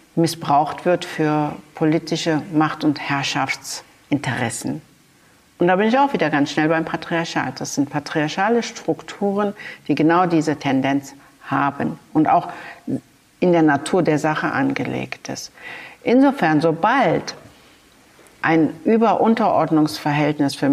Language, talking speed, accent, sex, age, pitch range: German, 115 wpm, German, female, 60-79, 150-180 Hz